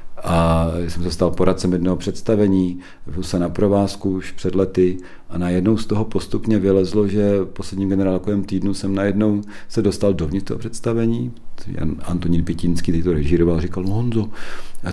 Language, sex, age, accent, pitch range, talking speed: Czech, male, 40-59, native, 80-95 Hz, 160 wpm